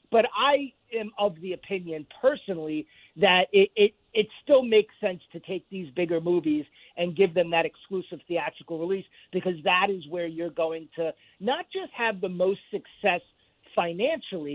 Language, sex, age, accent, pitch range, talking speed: English, male, 40-59, American, 175-215 Hz, 165 wpm